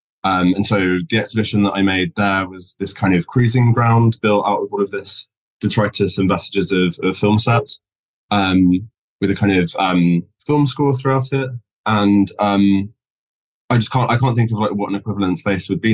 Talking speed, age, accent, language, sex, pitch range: 205 wpm, 20-39, British, English, male, 95-110 Hz